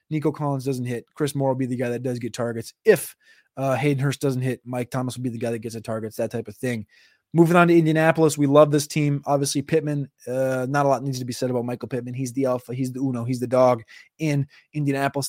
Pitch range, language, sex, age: 130-155 Hz, English, male, 20-39